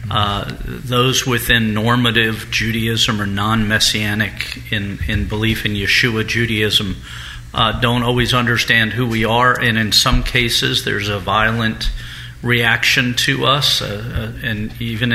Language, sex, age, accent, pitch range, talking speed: English, male, 50-69, American, 110-125 Hz, 135 wpm